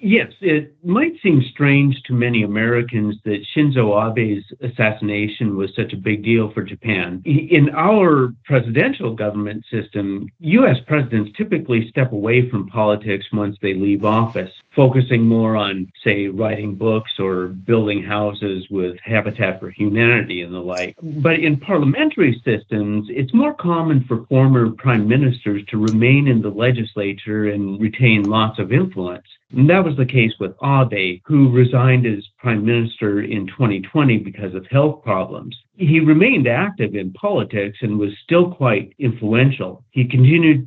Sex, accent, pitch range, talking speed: male, American, 105-130 Hz, 150 wpm